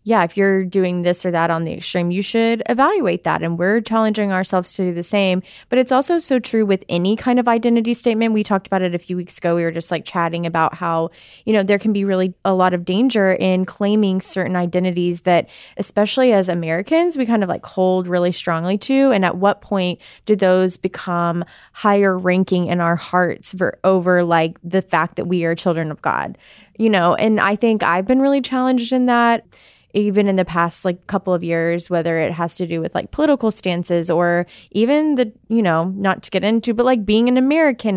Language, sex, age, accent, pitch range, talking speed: English, female, 20-39, American, 175-230 Hz, 220 wpm